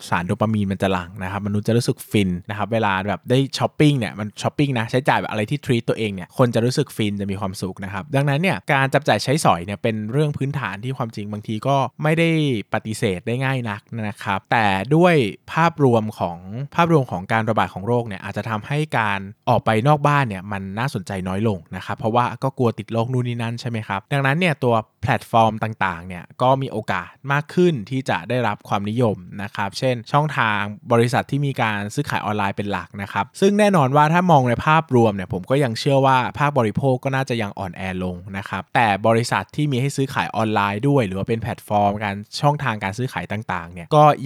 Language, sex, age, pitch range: Thai, male, 20-39, 100-135 Hz